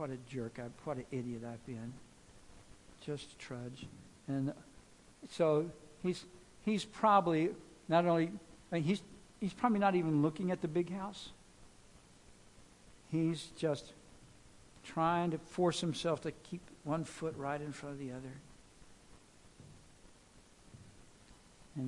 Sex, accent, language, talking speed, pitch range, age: male, American, English, 125 wpm, 150-200 Hz, 60-79